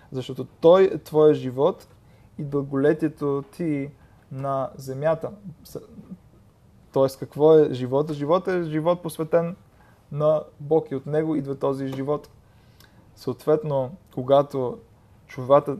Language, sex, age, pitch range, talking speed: Bulgarian, male, 20-39, 125-145 Hz, 110 wpm